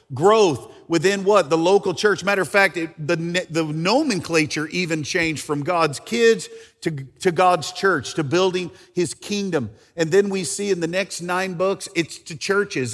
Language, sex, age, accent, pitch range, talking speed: English, male, 50-69, American, 160-200 Hz, 175 wpm